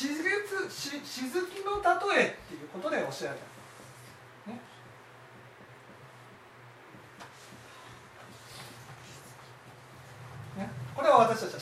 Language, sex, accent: Japanese, male, native